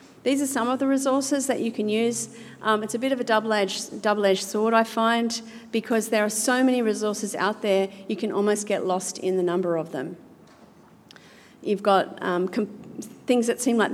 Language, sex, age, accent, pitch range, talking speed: English, female, 40-59, Australian, 190-220 Hz, 200 wpm